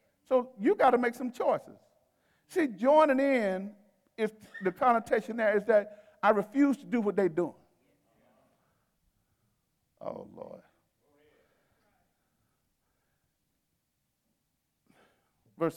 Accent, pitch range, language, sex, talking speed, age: American, 195-270 Hz, English, male, 95 wpm, 50-69